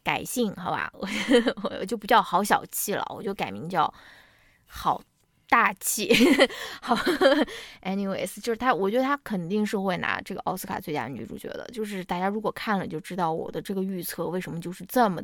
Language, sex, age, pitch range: Chinese, female, 20-39, 190-240 Hz